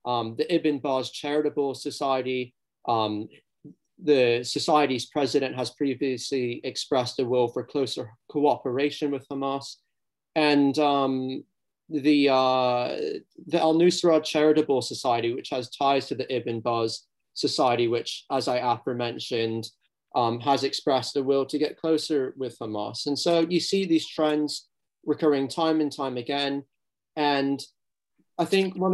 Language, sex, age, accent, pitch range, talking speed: English, male, 30-49, British, 125-155 Hz, 135 wpm